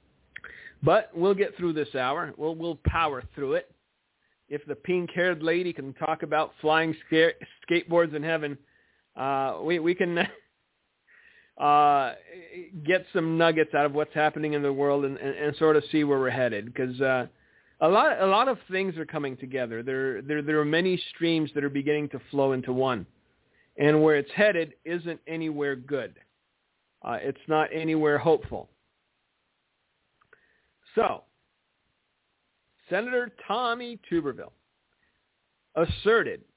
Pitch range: 145-195 Hz